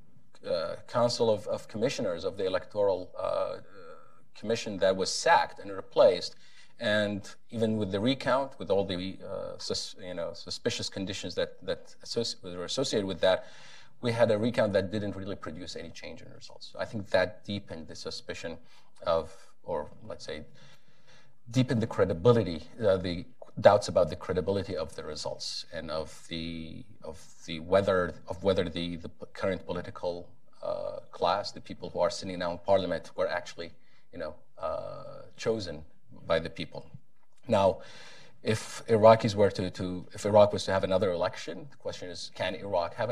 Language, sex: English, male